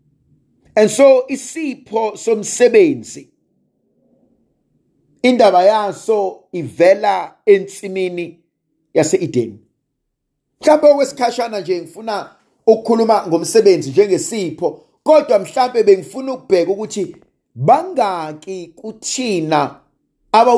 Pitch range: 160-255 Hz